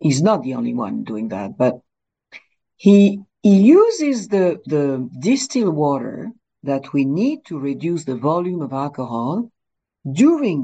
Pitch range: 140-230 Hz